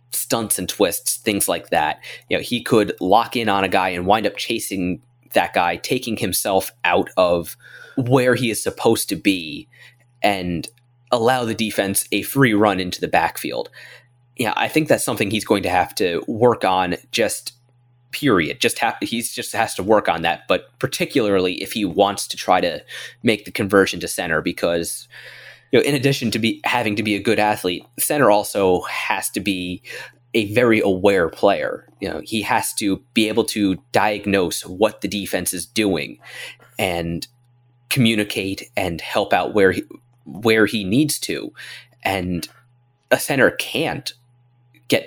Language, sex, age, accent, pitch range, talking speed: English, male, 20-39, American, 95-120 Hz, 170 wpm